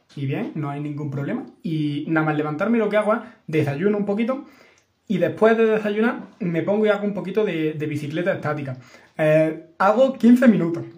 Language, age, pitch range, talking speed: Spanish, 20-39, 155-200 Hz, 190 wpm